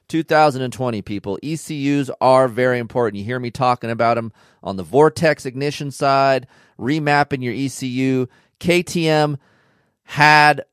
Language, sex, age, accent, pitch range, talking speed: English, male, 40-59, American, 130-170 Hz, 125 wpm